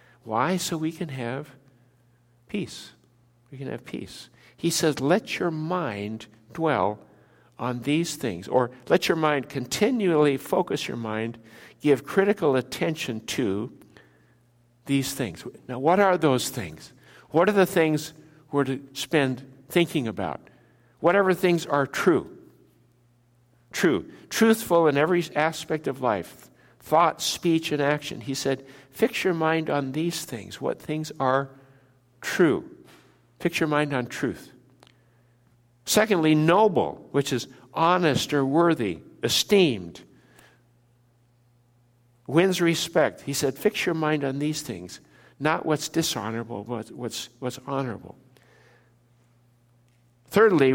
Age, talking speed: 60-79, 125 wpm